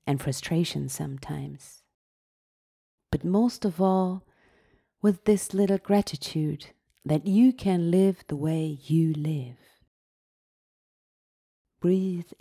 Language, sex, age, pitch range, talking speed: German, female, 30-49, 140-200 Hz, 95 wpm